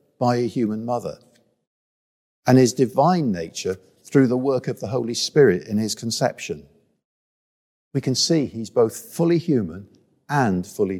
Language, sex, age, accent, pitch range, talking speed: English, male, 50-69, British, 115-145 Hz, 145 wpm